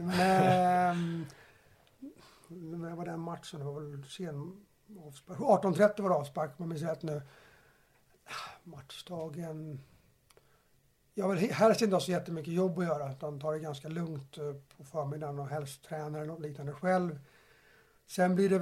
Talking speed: 145 wpm